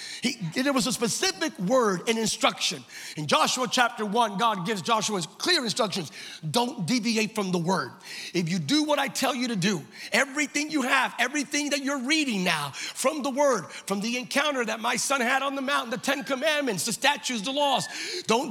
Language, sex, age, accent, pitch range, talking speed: English, male, 40-59, American, 235-305 Hz, 195 wpm